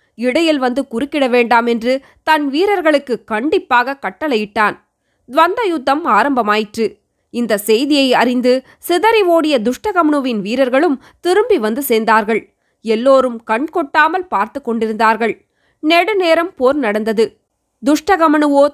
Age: 20-39